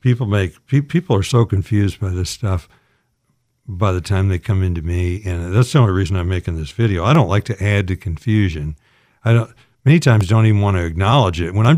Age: 60-79